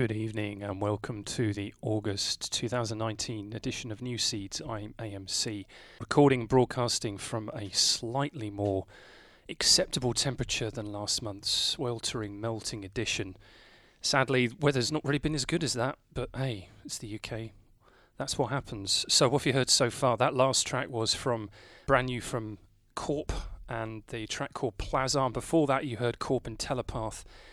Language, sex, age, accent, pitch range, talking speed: English, male, 30-49, British, 105-130 Hz, 160 wpm